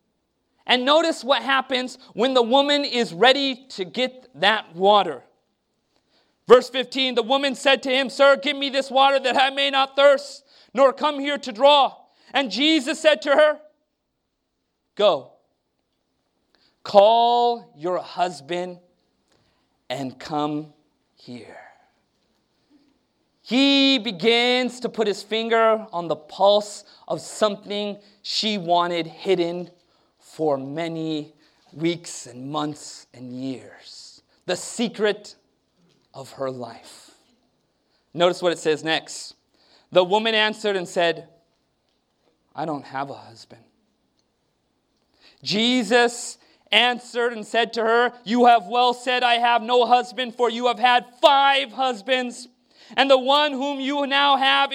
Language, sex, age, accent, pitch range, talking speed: English, male, 30-49, American, 180-275 Hz, 125 wpm